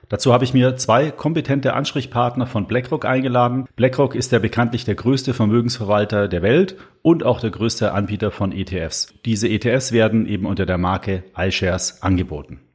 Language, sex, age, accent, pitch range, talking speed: German, male, 40-59, German, 100-130 Hz, 170 wpm